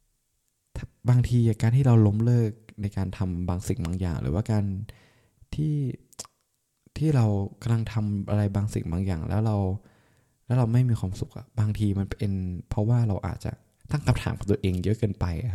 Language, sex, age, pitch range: Thai, male, 20-39, 90-115 Hz